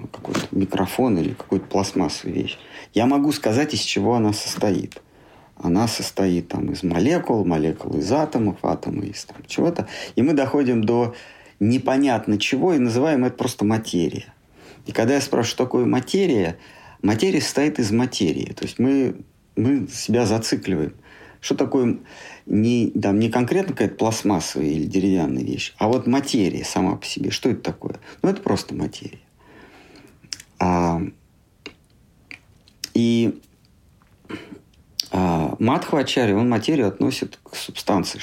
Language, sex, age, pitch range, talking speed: Russian, male, 50-69, 95-125 Hz, 135 wpm